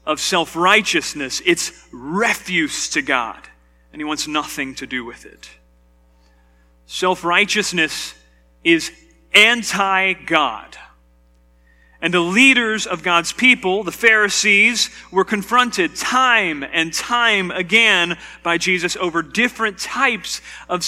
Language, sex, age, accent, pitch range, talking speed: English, male, 40-59, American, 145-215 Hz, 105 wpm